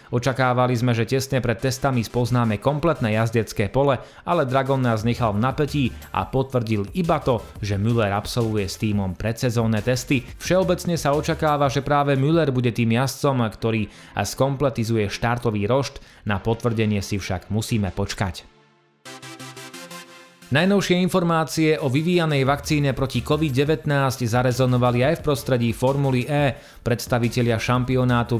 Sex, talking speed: male, 130 wpm